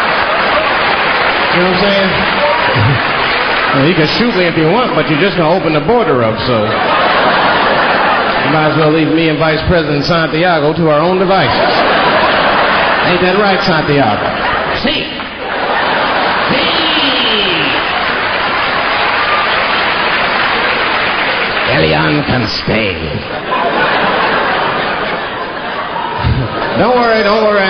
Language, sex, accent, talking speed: English, male, American, 115 wpm